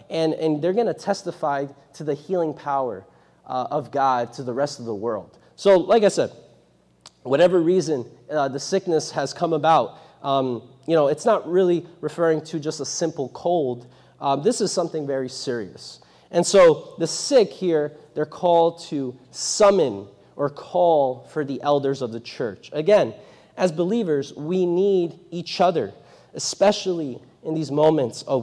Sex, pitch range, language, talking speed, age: male, 140-175 Hz, English, 165 wpm, 30-49